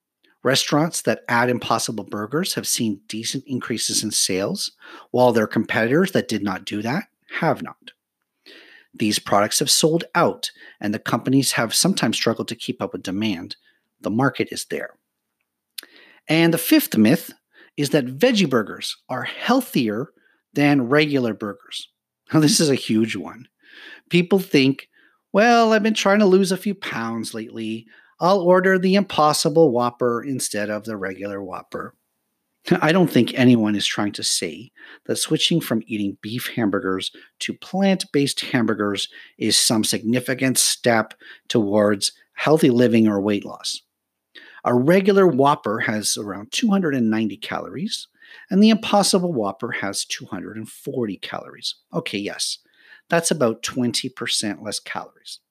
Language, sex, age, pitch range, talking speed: English, male, 40-59, 110-165 Hz, 140 wpm